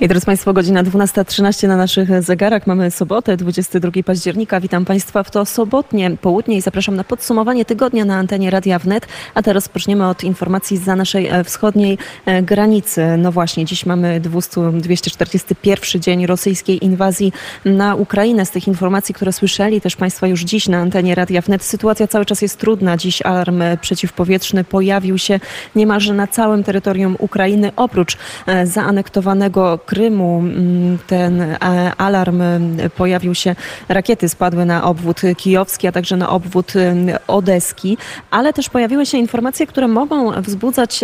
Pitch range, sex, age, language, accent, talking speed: 180-205 Hz, female, 20-39, Polish, native, 145 wpm